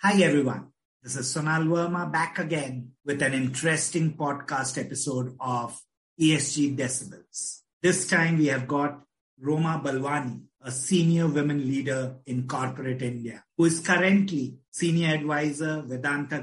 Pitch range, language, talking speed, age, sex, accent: 135-155 Hz, English, 130 wpm, 50-69, male, Indian